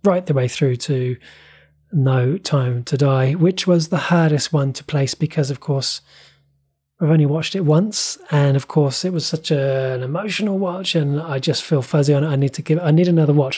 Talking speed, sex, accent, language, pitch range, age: 210 wpm, male, British, English, 135-160 Hz, 20-39